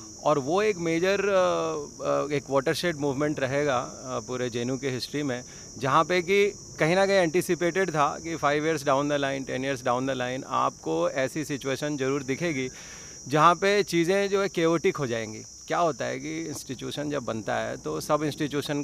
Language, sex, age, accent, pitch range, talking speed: Hindi, male, 30-49, native, 120-160 Hz, 180 wpm